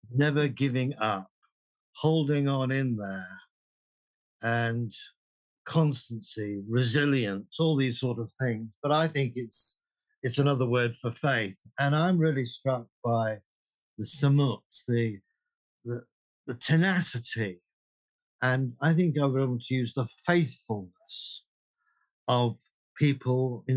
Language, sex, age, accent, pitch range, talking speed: English, male, 50-69, British, 110-140 Hz, 120 wpm